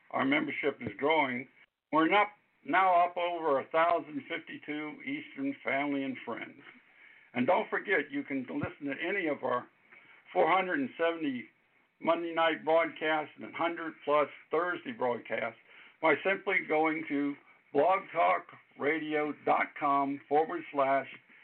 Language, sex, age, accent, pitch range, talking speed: English, male, 60-79, American, 135-175 Hz, 105 wpm